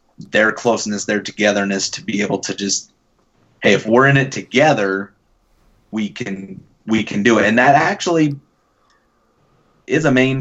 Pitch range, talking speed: 100-120 Hz, 155 wpm